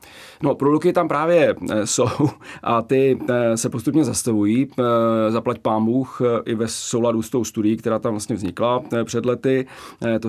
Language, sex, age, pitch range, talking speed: Czech, male, 30-49, 110-125 Hz, 145 wpm